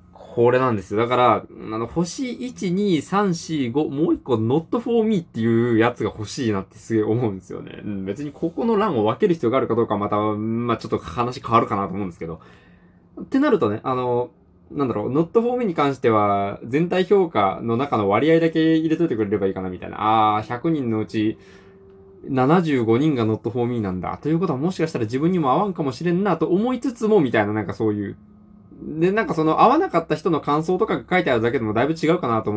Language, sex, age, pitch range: Japanese, male, 20-39, 110-175 Hz